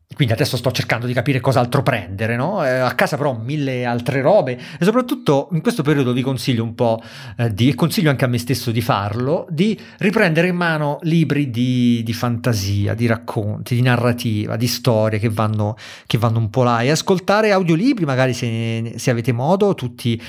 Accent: native